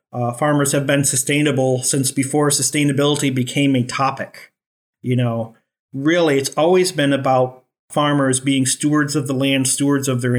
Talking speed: 155 wpm